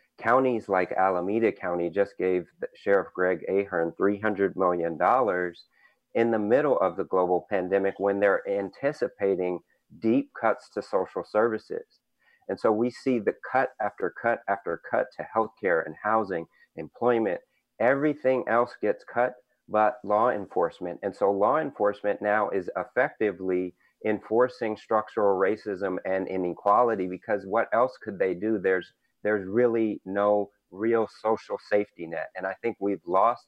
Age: 40-59